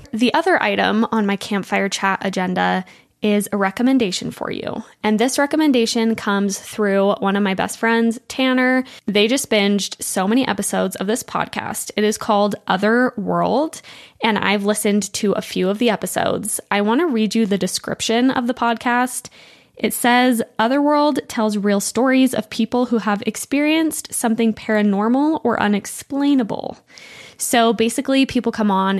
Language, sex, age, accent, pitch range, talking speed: English, female, 10-29, American, 200-250 Hz, 160 wpm